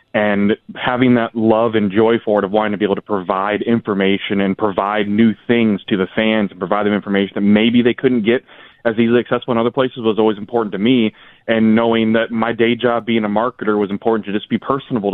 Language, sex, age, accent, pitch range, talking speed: English, male, 30-49, American, 100-115 Hz, 230 wpm